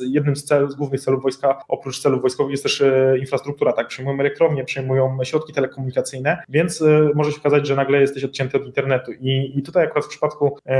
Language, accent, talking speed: Polish, native, 190 wpm